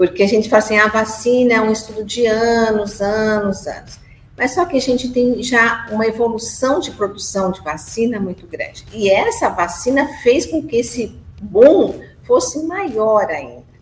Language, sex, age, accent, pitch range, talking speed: Portuguese, female, 50-69, Brazilian, 190-245 Hz, 175 wpm